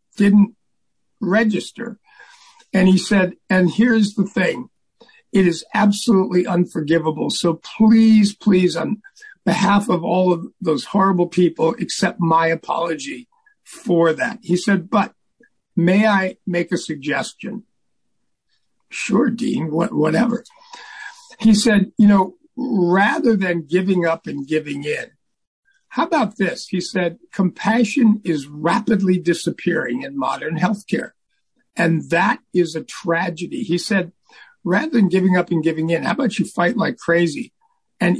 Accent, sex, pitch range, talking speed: American, male, 175-225 Hz, 130 wpm